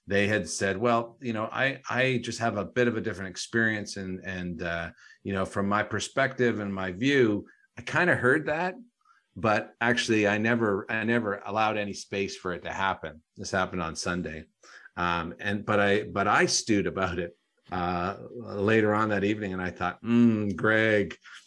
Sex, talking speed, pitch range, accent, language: male, 190 wpm, 95-115 Hz, American, English